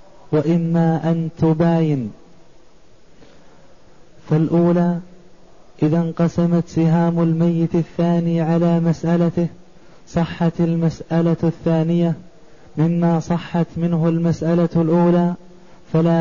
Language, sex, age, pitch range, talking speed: Arabic, male, 20-39, 160-170 Hz, 75 wpm